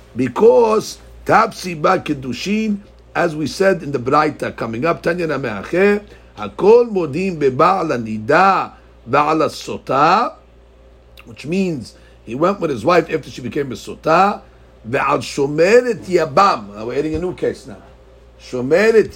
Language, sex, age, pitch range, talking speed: English, male, 60-79, 130-195 Hz, 115 wpm